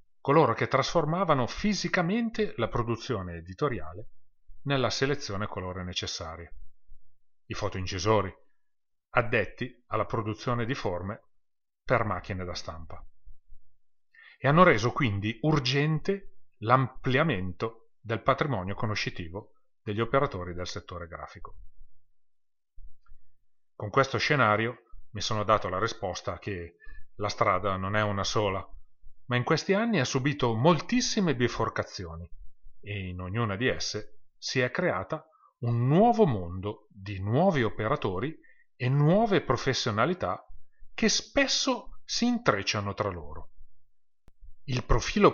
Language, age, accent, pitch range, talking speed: Italian, 30-49, native, 100-140 Hz, 110 wpm